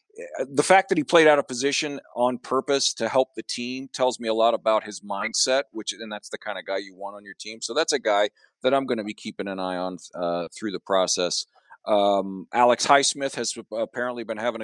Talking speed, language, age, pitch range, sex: 235 wpm, English, 40-59, 105-125 Hz, male